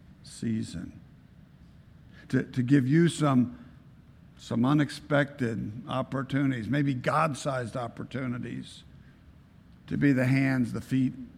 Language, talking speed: English, 95 wpm